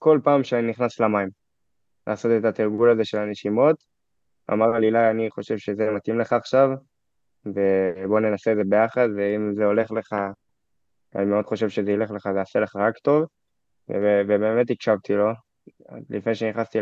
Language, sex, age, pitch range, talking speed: Hebrew, male, 20-39, 100-115 Hz, 155 wpm